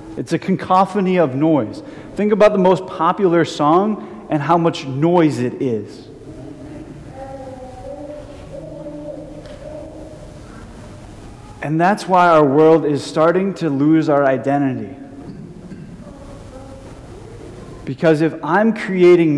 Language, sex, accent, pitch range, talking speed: English, male, American, 135-185 Hz, 100 wpm